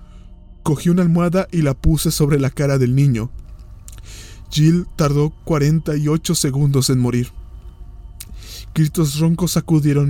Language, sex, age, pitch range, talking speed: Spanish, male, 20-39, 125-150 Hz, 120 wpm